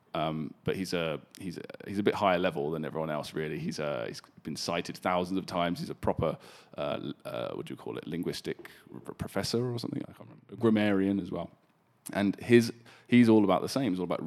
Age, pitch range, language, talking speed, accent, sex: 20-39, 85-110 Hz, English, 230 wpm, British, male